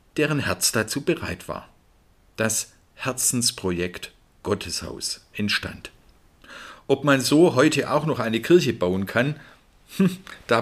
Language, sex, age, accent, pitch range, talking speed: German, male, 50-69, German, 95-130 Hz, 115 wpm